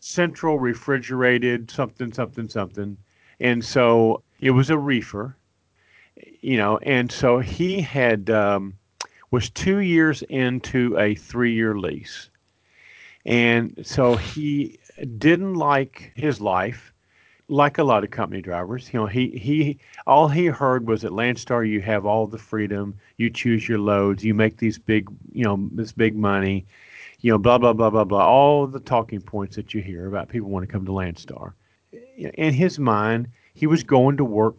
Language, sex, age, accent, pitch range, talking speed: English, male, 40-59, American, 105-135 Hz, 165 wpm